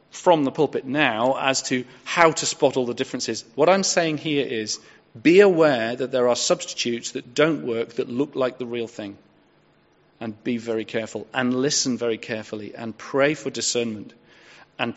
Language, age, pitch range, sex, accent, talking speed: English, 40-59, 115-150 Hz, male, British, 180 wpm